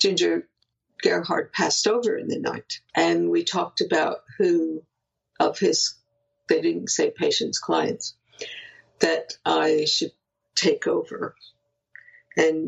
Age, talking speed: 60-79, 120 wpm